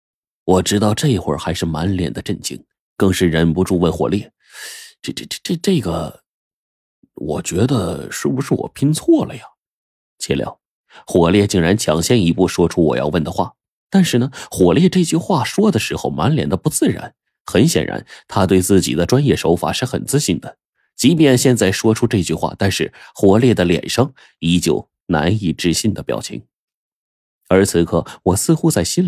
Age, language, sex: 30-49, Chinese, male